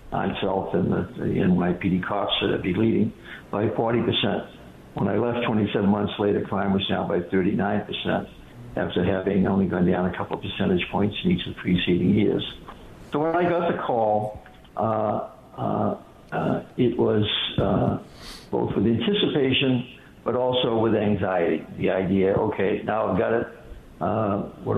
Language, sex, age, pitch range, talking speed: English, male, 60-79, 100-120 Hz, 160 wpm